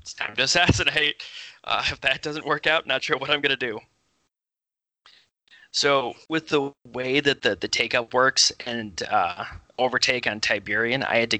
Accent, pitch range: American, 110-130 Hz